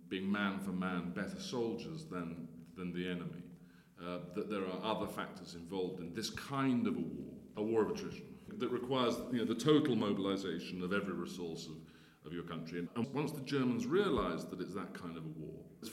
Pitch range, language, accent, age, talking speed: 85-115 Hz, English, British, 40-59, 205 wpm